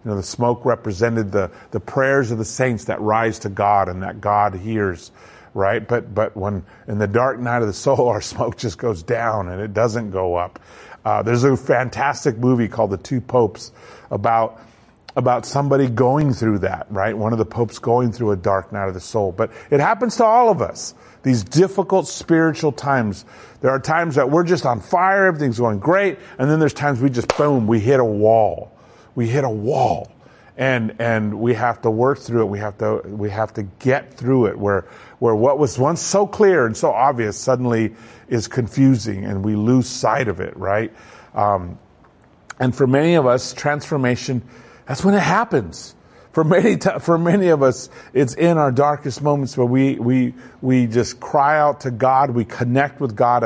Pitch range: 110-140 Hz